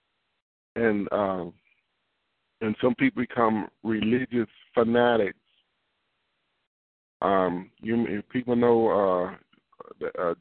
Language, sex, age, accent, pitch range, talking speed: English, male, 50-69, American, 100-120 Hz, 80 wpm